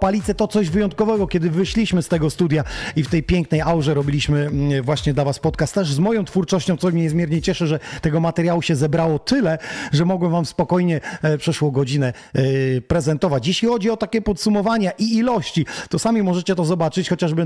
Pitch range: 150-190 Hz